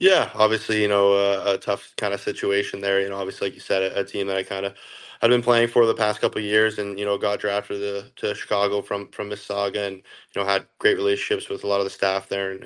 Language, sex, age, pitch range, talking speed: English, male, 20-39, 100-105 Hz, 280 wpm